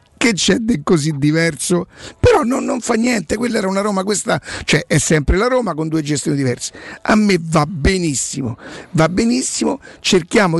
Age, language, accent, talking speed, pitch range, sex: 50-69, Italian, native, 165 wpm, 165-200 Hz, male